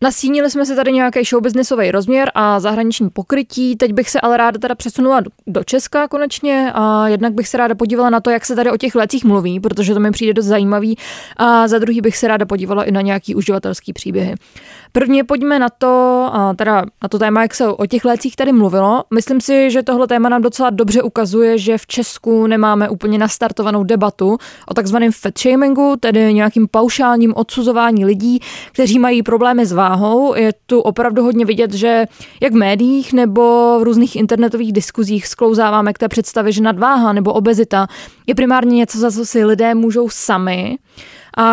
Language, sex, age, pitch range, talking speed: Czech, female, 20-39, 210-245 Hz, 190 wpm